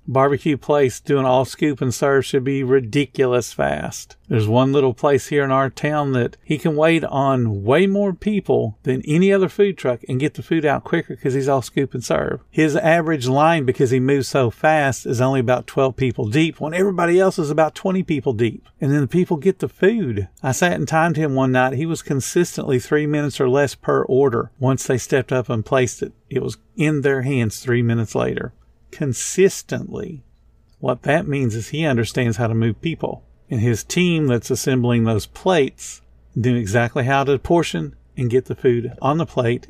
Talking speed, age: 205 wpm, 50-69